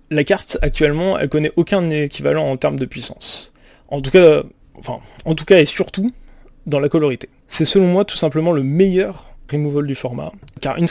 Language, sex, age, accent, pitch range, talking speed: French, male, 30-49, French, 135-170 Hz, 200 wpm